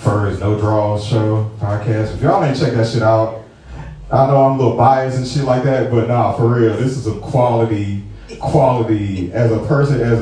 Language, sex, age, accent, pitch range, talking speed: English, male, 30-49, American, 105-135 Hz, 205 wpm